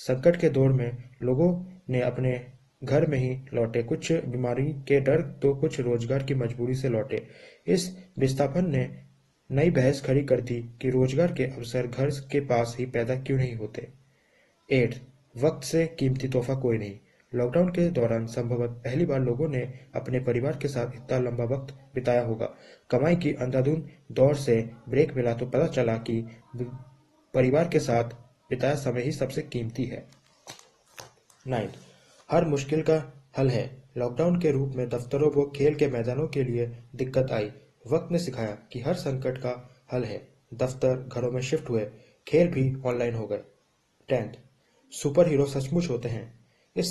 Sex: male